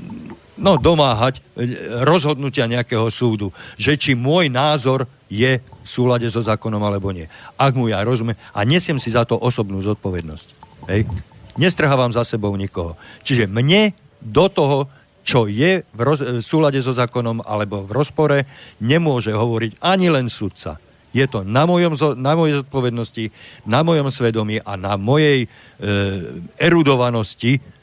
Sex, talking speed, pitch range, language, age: male, 135 wpm, 105-140 Hz, Slovak, 50-69